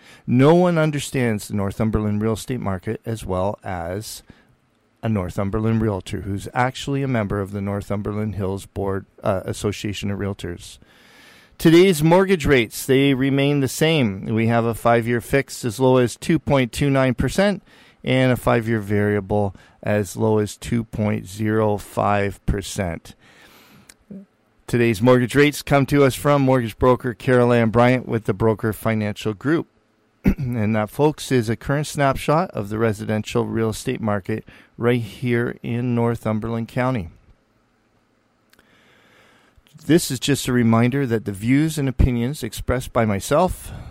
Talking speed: 135 wpm